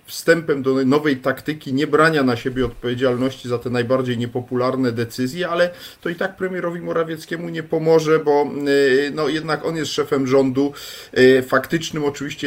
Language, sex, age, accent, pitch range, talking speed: Polish, male, 40-59, native, 125-145 Hz, 145 wpm